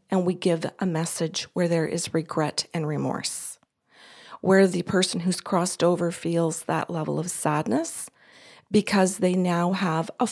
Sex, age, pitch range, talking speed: female, 40-59, 170-200 Hz, 155 wpm